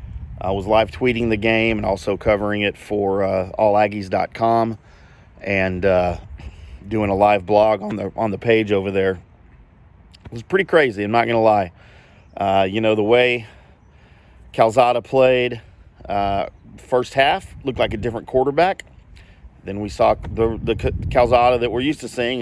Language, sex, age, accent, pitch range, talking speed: English, male, 40-59, American, 95-115 Hz, 165 wpm